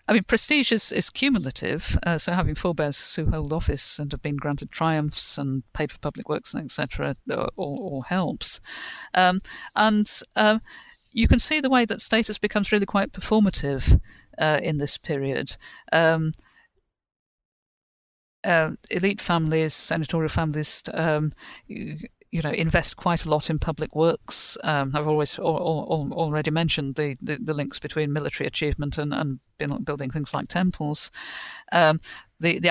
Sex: female